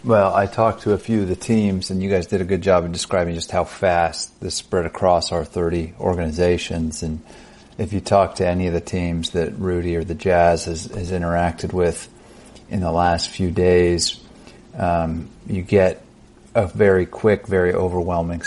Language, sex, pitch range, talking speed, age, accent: English, male, 85-100 Hz, 190 wpm, 30-49, American